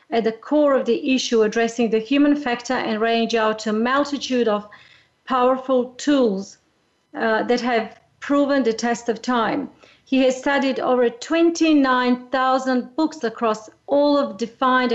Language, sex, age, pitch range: English, female, 40-59, 225-260 Hz